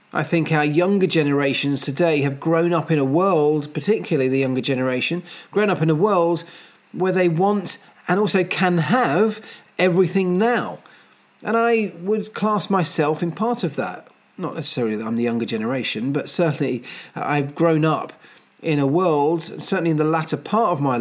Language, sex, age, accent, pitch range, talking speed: English, male, 40-59, British, 155-190 Hz, 175 wpm